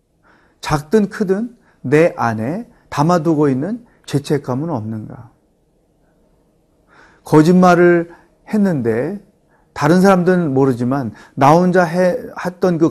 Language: Korean